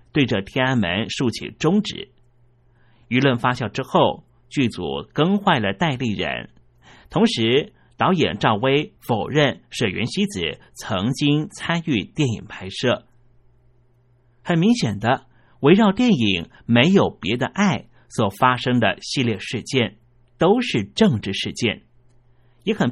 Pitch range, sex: 120-170 Hz, male